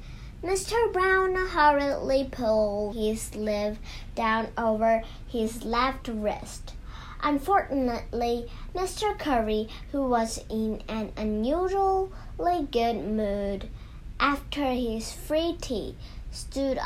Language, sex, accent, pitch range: Chinese, male, American, 215-280 Hz